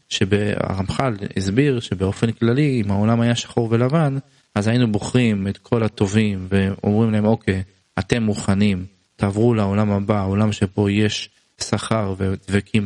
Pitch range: 105-135 Hz